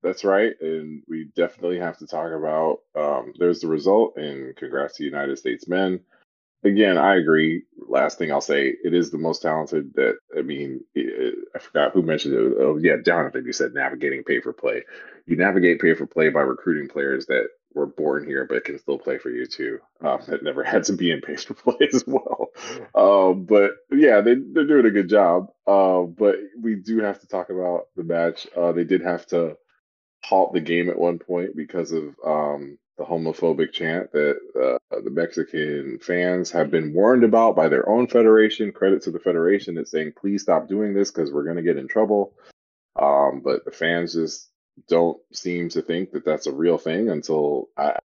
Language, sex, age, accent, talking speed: English, male, 30-49, American, 190 wpm